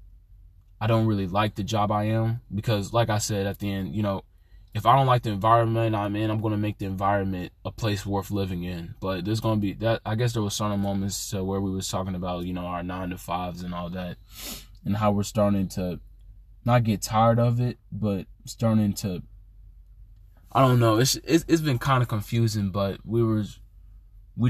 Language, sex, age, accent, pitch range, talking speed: English, male, 20-39, American, 95-110 Hz, 220 wpm